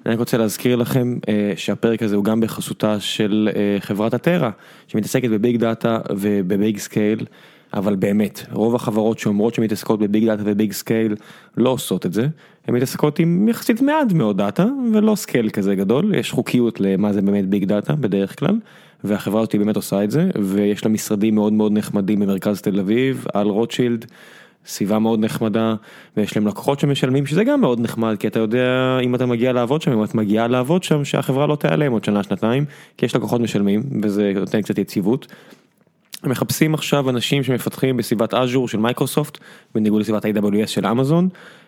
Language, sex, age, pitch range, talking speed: Hebrew, male, 20-39, 105-130 Hz, 175 wpm